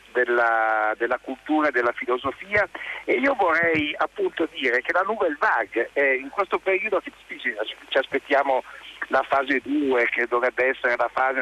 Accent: native